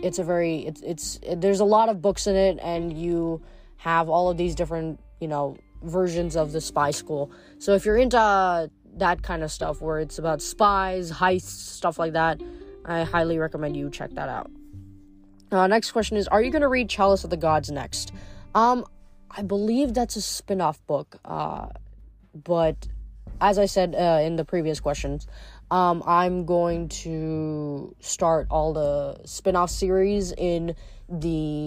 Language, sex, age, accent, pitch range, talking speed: English, female, 20-39, American, 155-190 Hz, 180 wpm